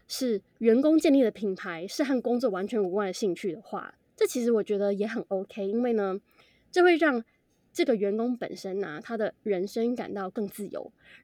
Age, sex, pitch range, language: 20-39, female, 200-275 Hz, Chinese